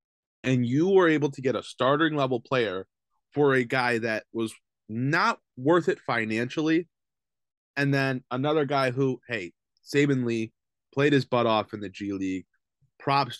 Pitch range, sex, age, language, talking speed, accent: 110-150 Hz, male, 20-39, English, 160 wpm, American